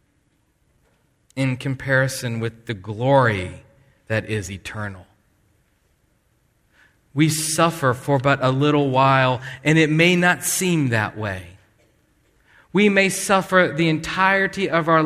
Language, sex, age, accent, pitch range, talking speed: English, male, 40-59, American, 130-175 Hz, 115 wpm